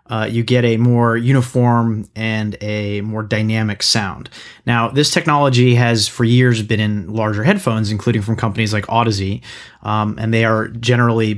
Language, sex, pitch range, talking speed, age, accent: English, male, 110-130 Hz, 165 wpm, 30-49, American